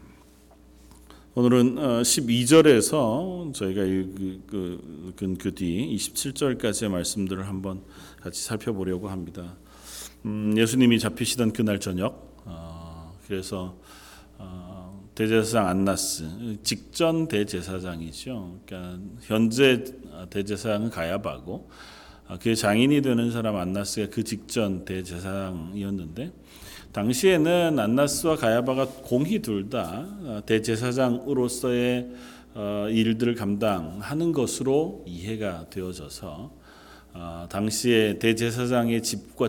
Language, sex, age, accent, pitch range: Korean, male, 40-59, native, 90-120 Hz